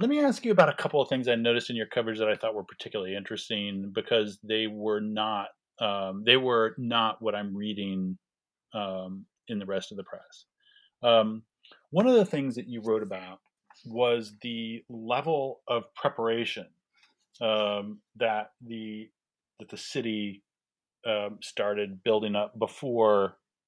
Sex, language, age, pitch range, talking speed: male, English, 40-59, 105-135 Hz, 160 wpm